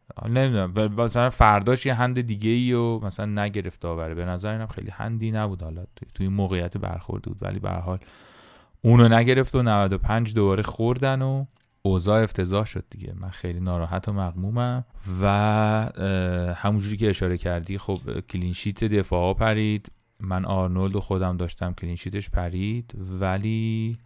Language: Persian